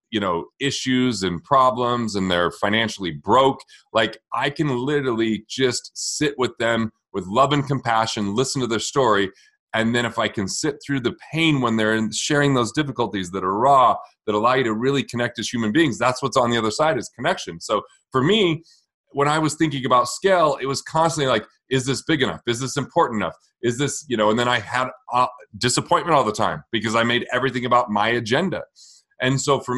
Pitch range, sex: 115-145 Hz, male